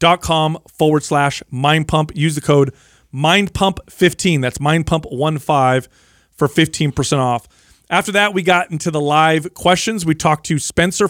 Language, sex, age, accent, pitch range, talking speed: English, male, 40-59, American, 145-175 Hz, 135 wpm